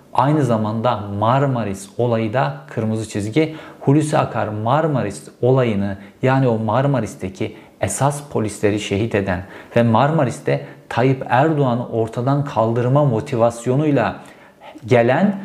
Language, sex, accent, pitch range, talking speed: Turkish, male, native, 110-145 Hz, 100 wpm